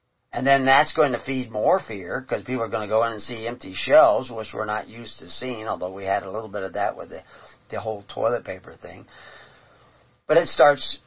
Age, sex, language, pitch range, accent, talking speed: 40-59, male, English, 105-135 Hz, American, 235 wpm